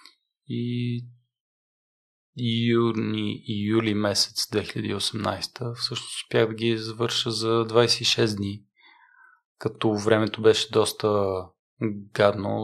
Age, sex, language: 20-39, male, Bulgarian